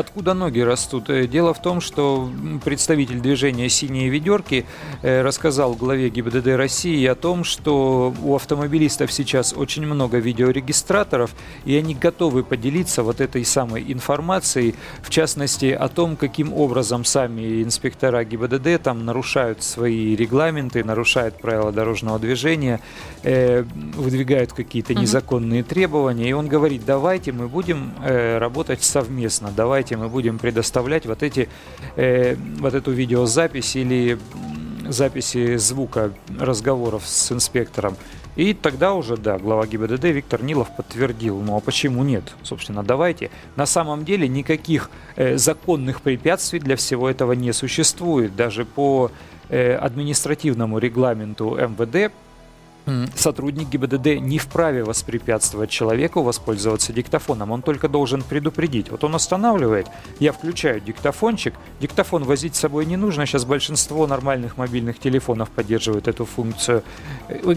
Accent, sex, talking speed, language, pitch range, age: native, male, 125 wpm, Russian, 120-150 Hz, 40-59